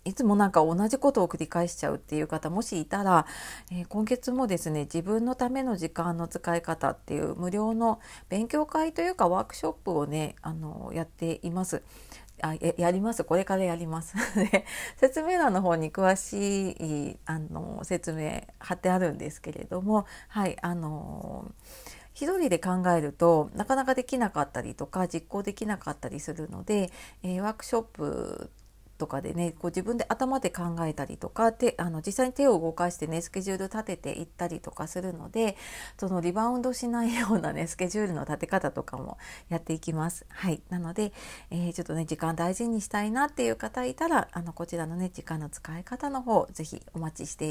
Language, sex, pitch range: Japanese, female, 165-220 Hz